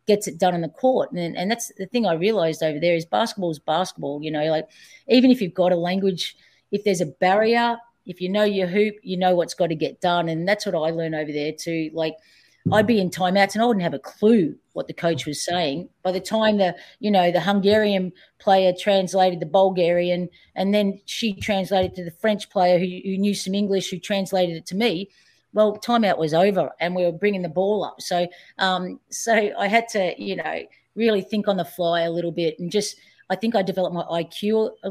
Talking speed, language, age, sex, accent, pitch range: 230 wpm, English, 40-59, female, Australian, 165-205 Hz